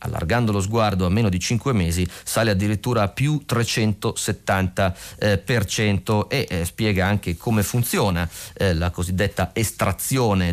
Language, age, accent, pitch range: Italian, 30-49, native, 95-115 Hz